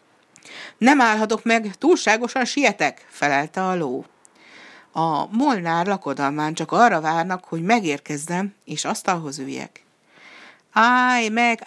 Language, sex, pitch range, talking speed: Hungarian, female, 150-210 Hz, 110 wpm